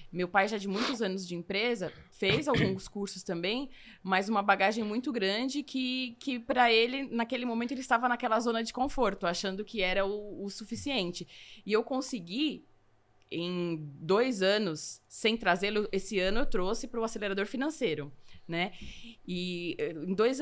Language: Portuguese